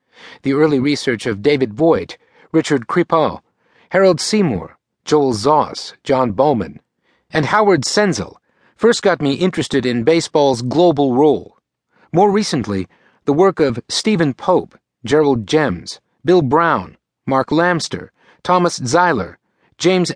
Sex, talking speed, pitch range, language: male, 120 wpm, 130-175 Hz, English